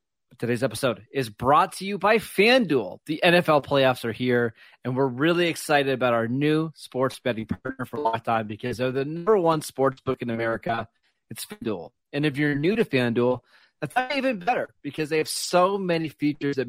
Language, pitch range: English, 125-155 Hz